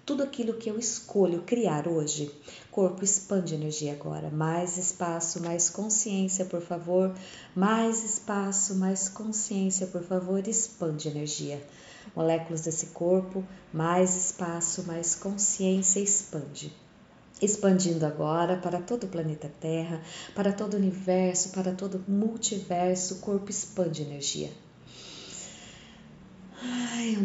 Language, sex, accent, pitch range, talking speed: Portuguese, female, Brazilian, 165-195 Hz, 115 wpm